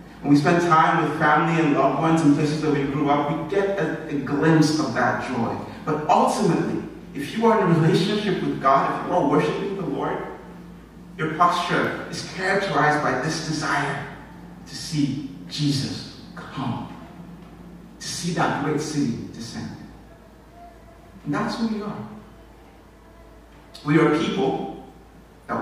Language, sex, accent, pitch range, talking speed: English, male, American, 130-175 Hz, 150 wpm